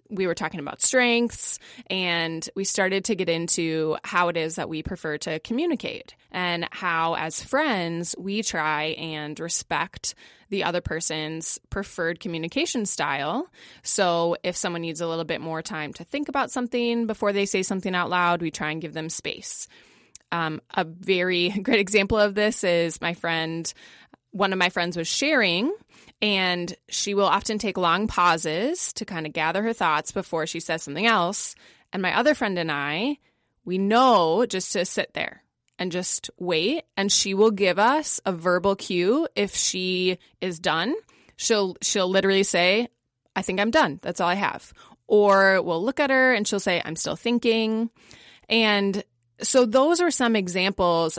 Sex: female